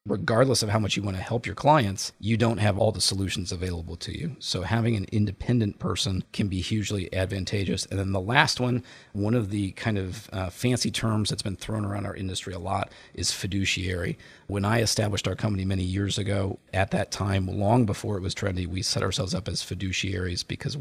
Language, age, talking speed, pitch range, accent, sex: English, 40-59, 215 wpm, 95-110 Hz, American, male